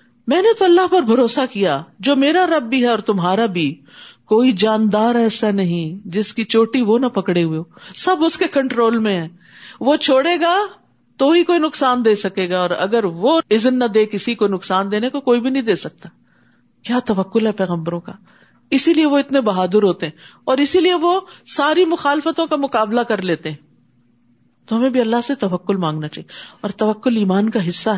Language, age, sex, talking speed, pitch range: Urdu, 50-69, female, 200 wpm, 190-265 Hz